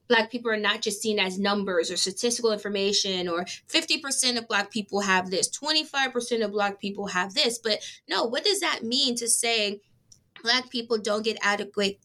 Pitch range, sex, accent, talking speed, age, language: 195-225 Hz, female, American, 185 wpm, 20-39, English